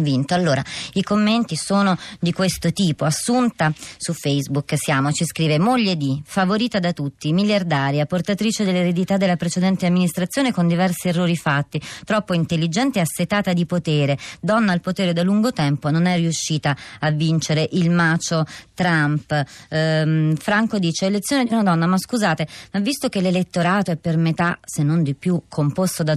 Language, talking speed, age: Italian, 160 wpm, 30-49